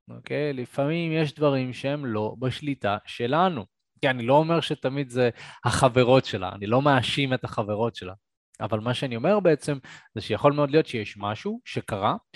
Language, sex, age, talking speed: Hebrew, male, 20-39, 170 wpm